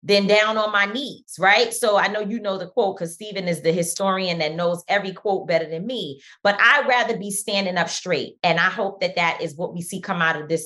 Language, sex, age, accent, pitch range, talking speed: English, female, 20-39, American, 180-275 Hz, 255 wpm